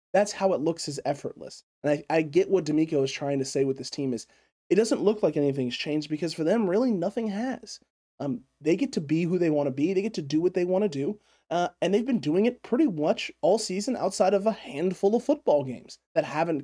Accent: American